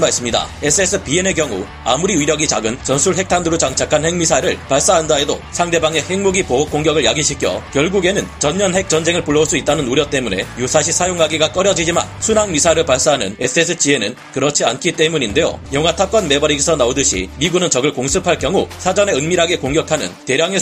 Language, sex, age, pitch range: Korean, male, 40-59, 145-180 Hz